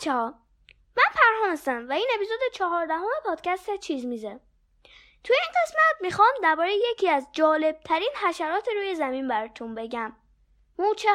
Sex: female